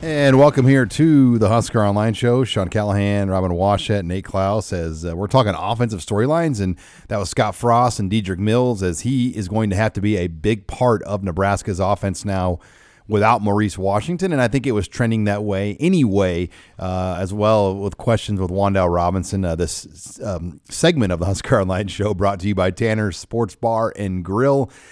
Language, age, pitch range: English, 40-59, 95-120 Hz